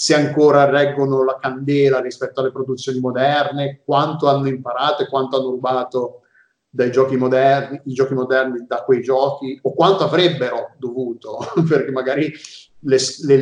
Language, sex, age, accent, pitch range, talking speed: Italian, male, 30-49, native, 125-145 Hz, 150 wpm